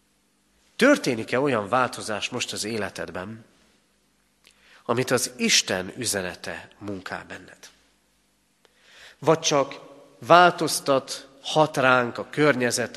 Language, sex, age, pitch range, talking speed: Hungarian, male, 40-59, 105-145 Hz, 85 wpm